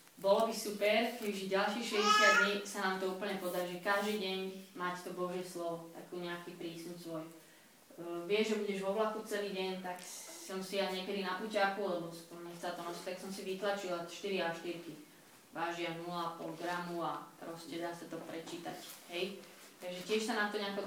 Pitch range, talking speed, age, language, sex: 175-205 Hz, 190 wpm, 20-39, Slovak, female